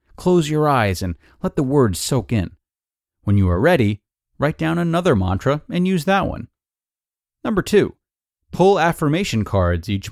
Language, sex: English, male